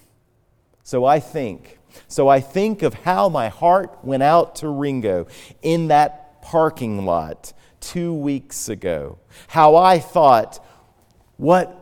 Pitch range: 115-160 Hz